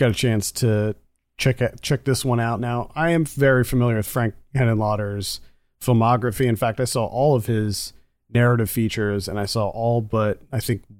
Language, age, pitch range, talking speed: English, 30-49, 105-125 Hz, 185 wpm